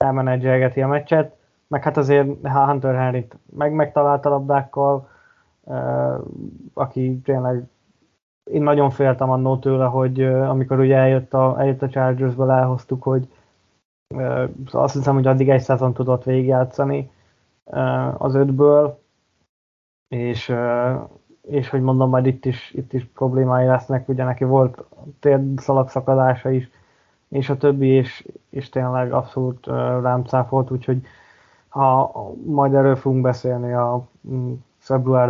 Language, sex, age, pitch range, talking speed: Hungarian, male, 20-39, 125-135 Hz, 130 wpm